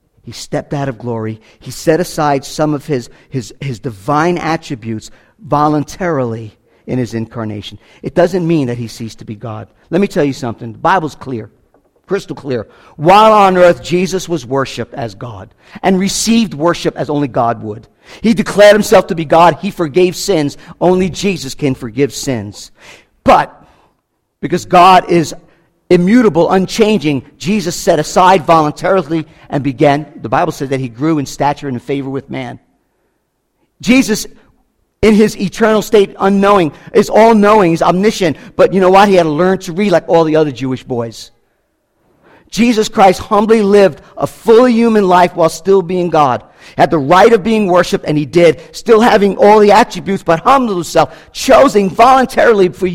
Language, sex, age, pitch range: English, male, 50-69, 140-195 Hz